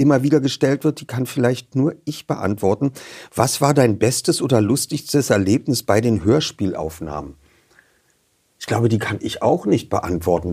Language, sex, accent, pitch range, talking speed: German, male, German, 105-140 Hz, 160 wpm